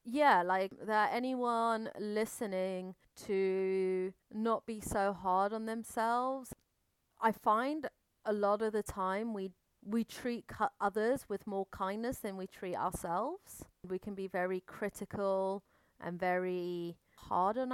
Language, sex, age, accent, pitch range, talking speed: English, female, 30-49, British, 175-210 Hz, 130 wpm